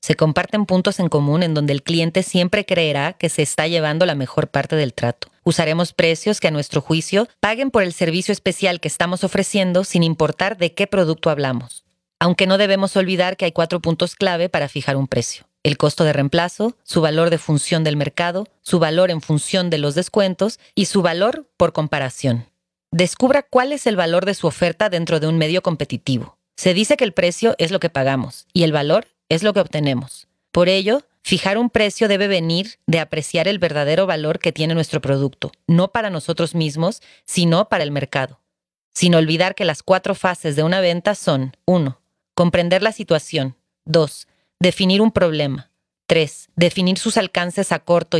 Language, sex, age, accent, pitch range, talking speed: Spanish, female, 30-49, Mexican, 155-190 Hz, 190 wpm